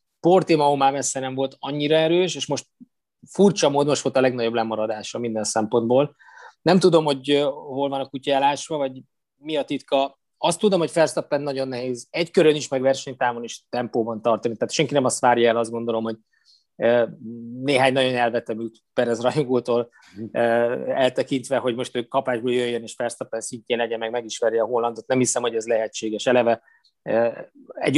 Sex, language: male, Hungarian